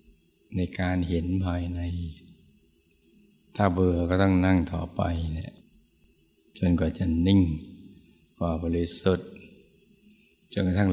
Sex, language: male, Thai